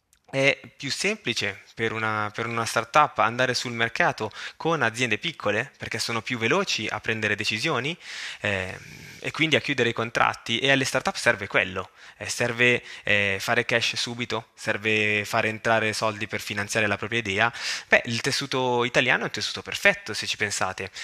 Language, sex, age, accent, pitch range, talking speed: Italian, male, 20-39, native, 110-130 Hz, 165 wpm